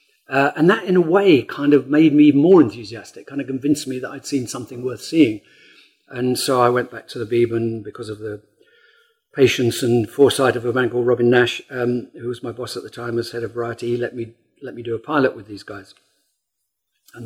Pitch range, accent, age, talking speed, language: 120-155 Hz, British, 50-69, 230 wpm, English